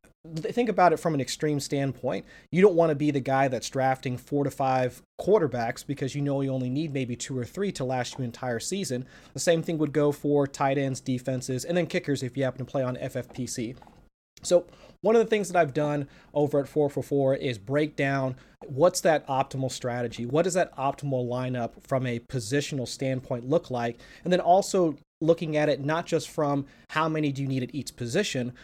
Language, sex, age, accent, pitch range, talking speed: English, male, 30-49, American, 130-150 Hz, 215 wpm